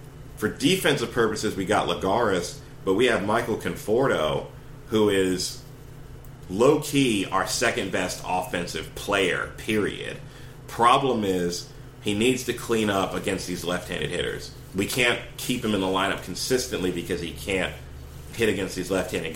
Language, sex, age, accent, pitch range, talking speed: English, male, 30-49, American, 95-130 Hz, 140 wpm